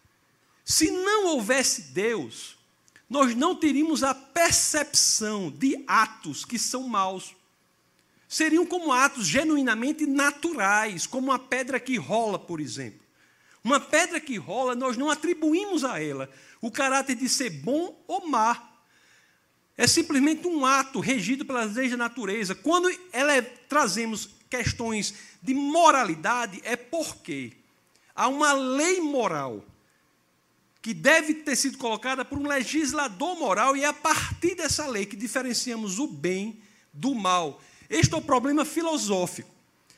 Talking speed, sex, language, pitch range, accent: 135 wpm, male, Portuguese, 190-285 Hz, Brazilian